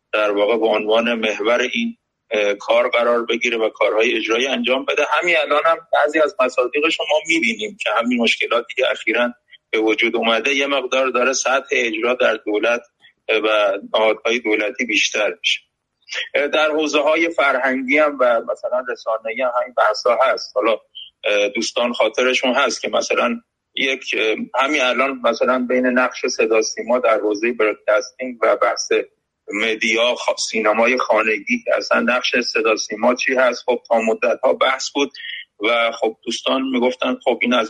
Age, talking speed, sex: 30-49, 155 wpm, male